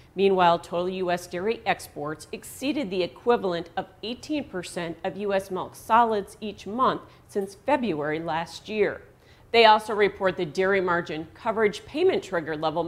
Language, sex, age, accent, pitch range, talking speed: English, female, 40-59, American, 175-215 Hz, 145 wpm